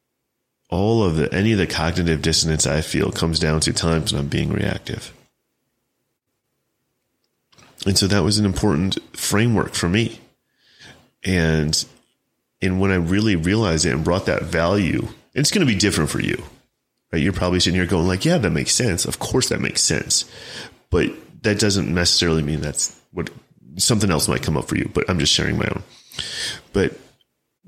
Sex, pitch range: male, 80-100 Hz